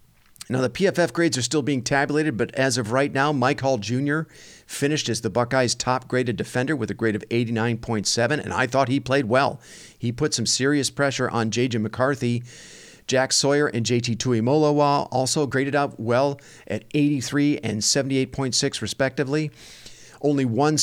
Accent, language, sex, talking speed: American, English, male, 165 wpm